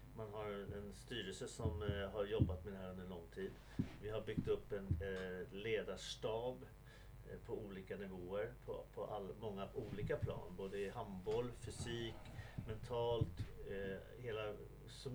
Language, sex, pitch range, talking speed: Swedish, male, 105-135 Hz, 130 wpm